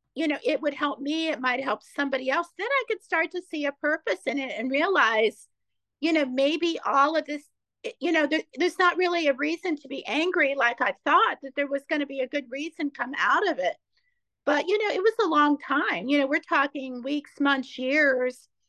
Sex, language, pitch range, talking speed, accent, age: female, English, 265-325 Hz, 220 wpm, American, 50-69